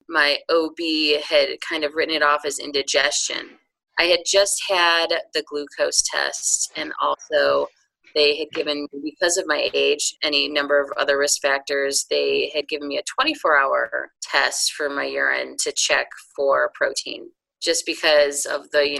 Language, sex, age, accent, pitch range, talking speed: English, female, 30-49, American, 150-220 Hz, 160 wpm